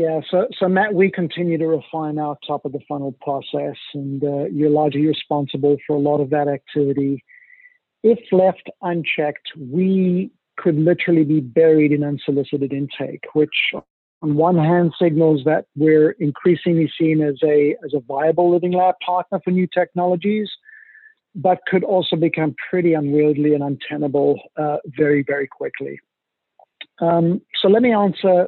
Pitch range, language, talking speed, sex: 150-180 Hz, English, 150 wpm, male